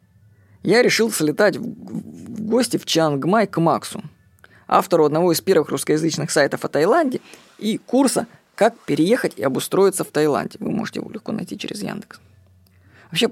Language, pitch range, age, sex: Russian, 130-190 Hz, 20-39, female